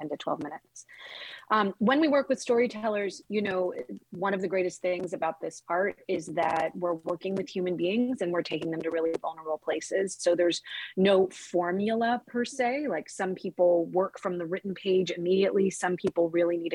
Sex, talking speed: female, 190 wpm